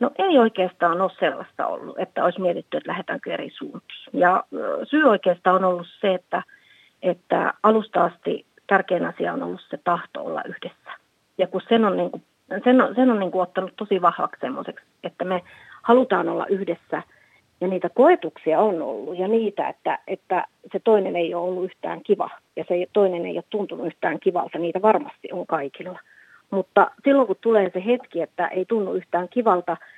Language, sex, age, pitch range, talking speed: Finnish, female, 40-59, 180-225 Hz, 180 wpm